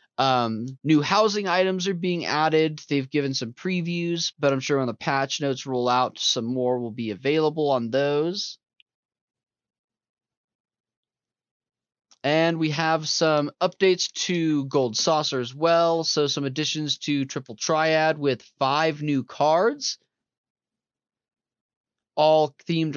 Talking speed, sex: 130 wpm, male